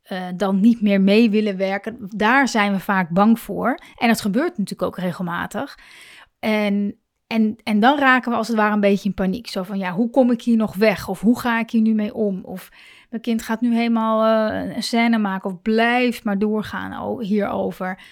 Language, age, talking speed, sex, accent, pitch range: Dutch, 30-49, 210 wpm, female, Dutch, 210-250 Hz